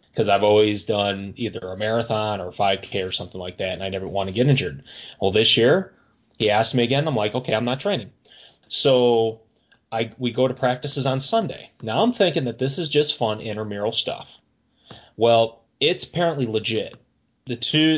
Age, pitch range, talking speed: 30-49, 105-135 Hz, 190 wpm